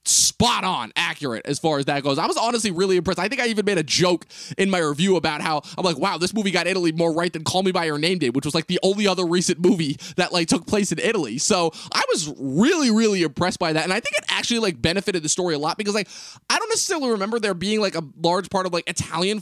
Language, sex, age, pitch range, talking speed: English, male, 20-39, 140-185 Hz, 275 wpm